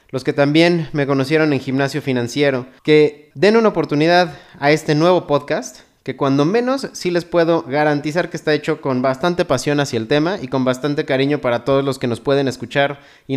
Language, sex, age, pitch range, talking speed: Spanish, male, 30-49, 130-165 Hz, 200 wpm